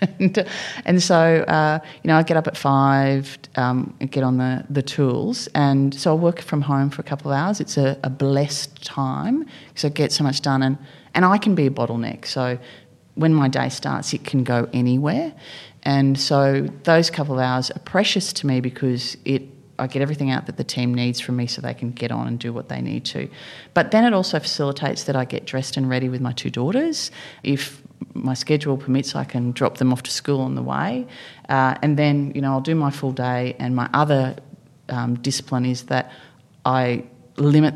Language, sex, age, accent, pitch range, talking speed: English, female, 30-49, Australian, 125-150 Hz, 220 wpm